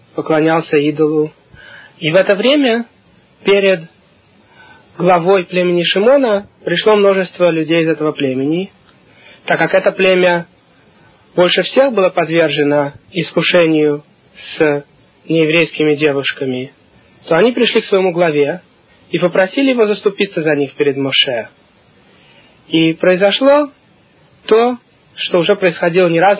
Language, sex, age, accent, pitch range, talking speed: Russian, male, 20-39, native, 150-195 Hz, 115 wpm